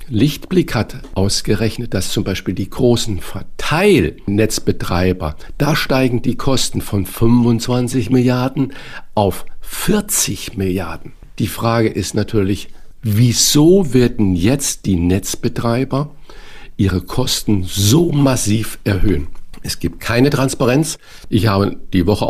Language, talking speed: German, 110 wpm